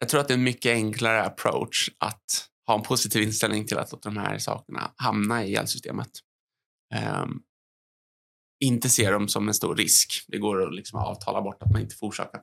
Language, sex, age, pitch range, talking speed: Swedish, male, 20-39, 105-115 Hz, 200 wpm